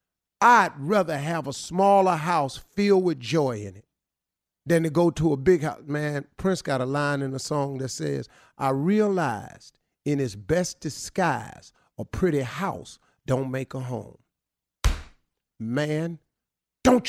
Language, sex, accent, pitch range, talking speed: English, male, American, 130-185 Hz, 150 wpm